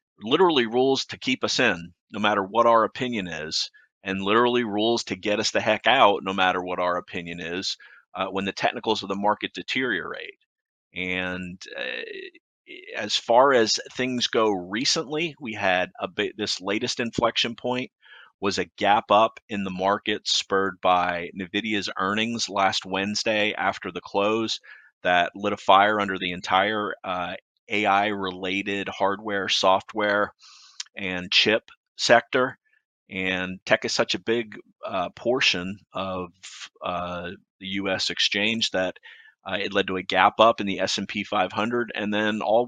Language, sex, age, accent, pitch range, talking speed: English, male, 30-49, American, 95-115 Hz, 155 wpm